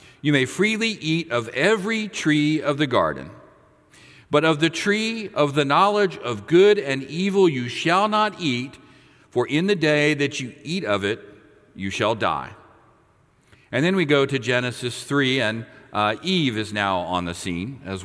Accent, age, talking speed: American, 50-69, 175 wpm